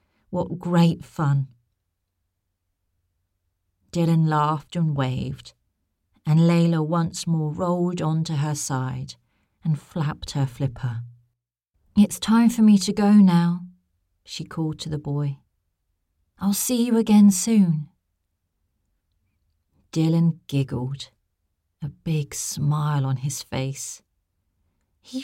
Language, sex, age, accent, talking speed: English, female, 40-59, British, 105 wpm